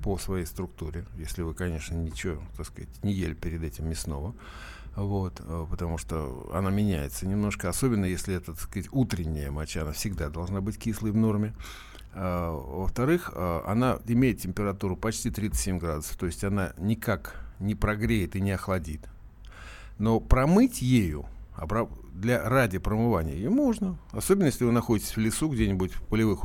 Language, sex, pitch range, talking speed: Russian, male, 85-110 Hz, 155 wpm